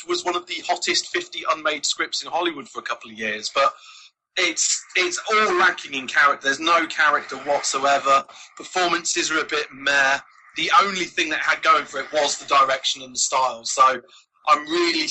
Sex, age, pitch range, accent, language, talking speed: male, 30-49, 125-170 Hz, British, English, 190 wpm